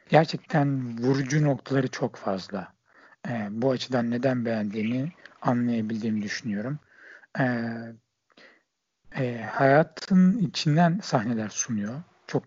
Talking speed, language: 85 wpm, Turkish